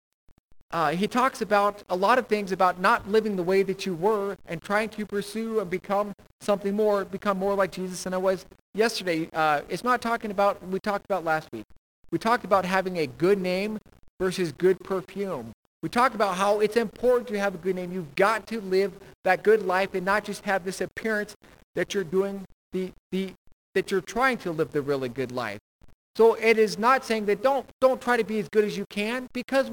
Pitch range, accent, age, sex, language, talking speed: 185-230 Hz, American, 50-69, male, English, 220 wpm